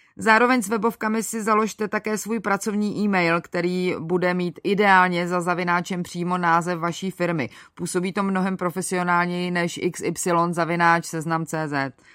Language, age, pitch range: Czech, 30-49, 180-215 Hz